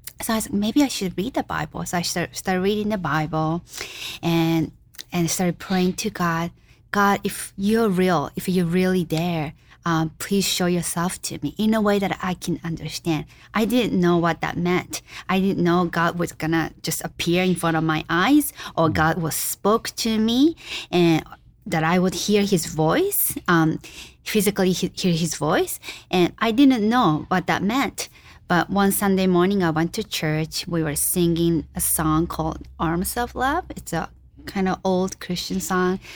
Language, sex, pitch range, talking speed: English, female, 165-190 Hz, 190 wpm